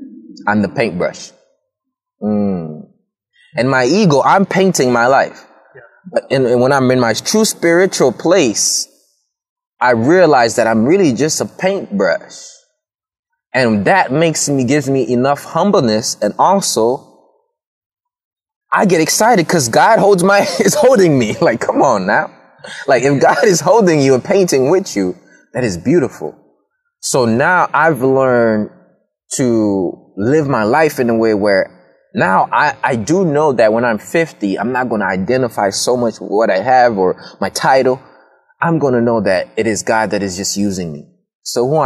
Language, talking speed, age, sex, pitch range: English, 165 wpm, 20-39, male, 100-170 Hz